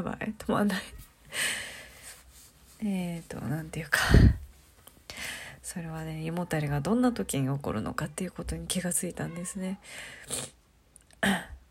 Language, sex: Japanese, female